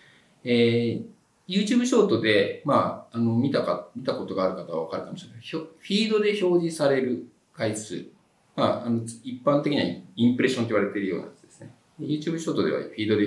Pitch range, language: 115-175 Hz, Japanese